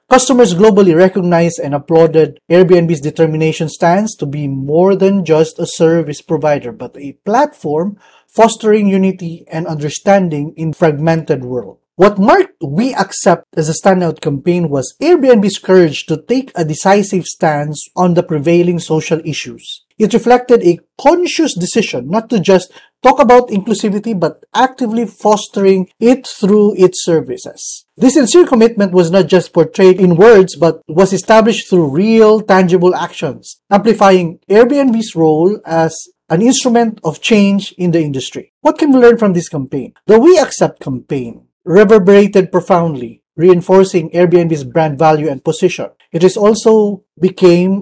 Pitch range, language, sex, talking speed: 165-210 Hz, English, male, 145 wpm